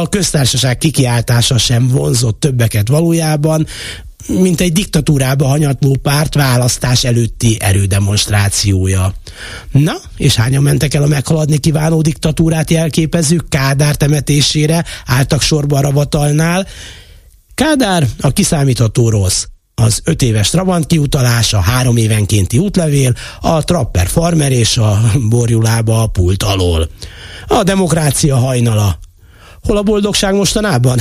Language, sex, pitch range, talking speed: Hungarian, male, 110-165 Hz, 115 wpm